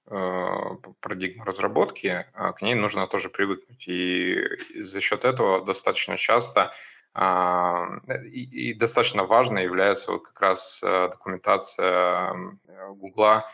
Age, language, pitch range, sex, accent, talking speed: 20-39, Russian, 90-105 Hz, male, native, 100 wpm